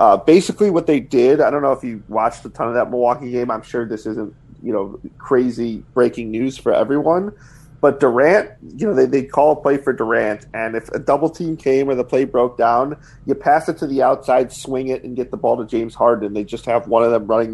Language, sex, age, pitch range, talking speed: English, male, 30-49, 120-140 Hz, 245 wpm